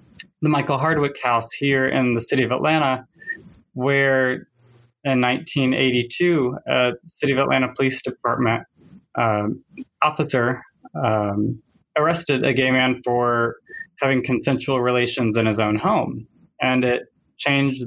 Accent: American